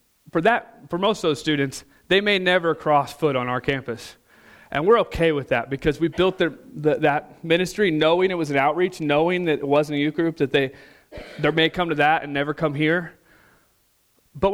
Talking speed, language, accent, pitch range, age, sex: 210 wpm, English, American, 140-165 Hz, 30-49, male